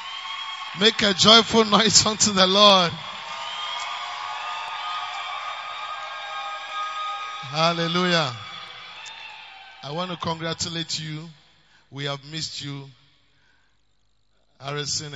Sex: male